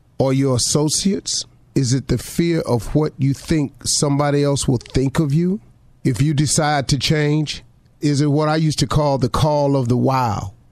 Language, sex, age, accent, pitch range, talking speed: English, male, 40-59, American, 120-150 Hz, 190 wpm